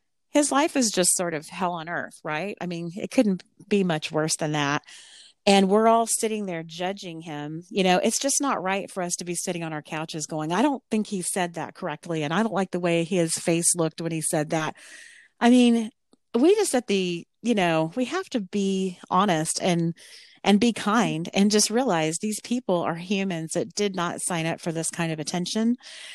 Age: 40-59